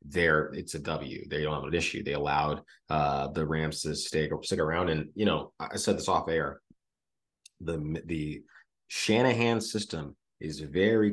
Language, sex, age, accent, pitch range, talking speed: English, male, 30-49, American, 75-80 Hz, 180 wpm